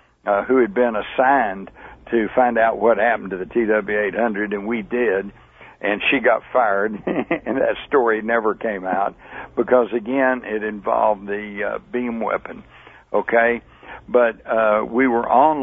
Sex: male